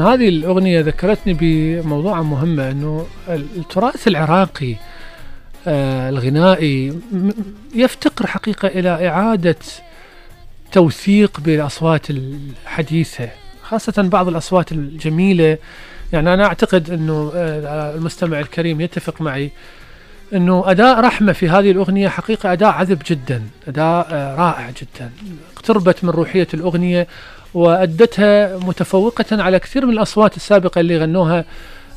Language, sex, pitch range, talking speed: Arabic, male, 155-195 Hz, 100 wpm